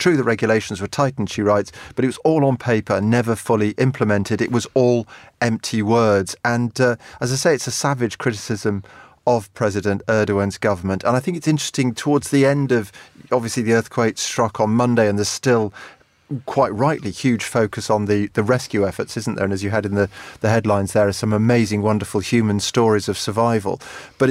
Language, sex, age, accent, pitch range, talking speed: English, male, 40-59, British, 105-125 Hz, 200 wpm